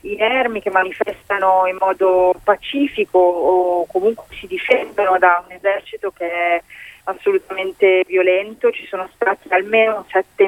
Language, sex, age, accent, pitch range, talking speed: Italian, female, 30-49, native, 180-210 Hz, 130 wpm